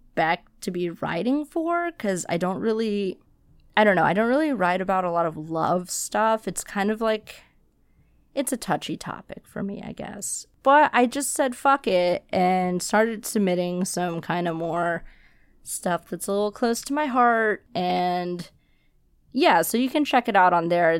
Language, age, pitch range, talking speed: English, 20-39, 165-210 Hz, 185 wpm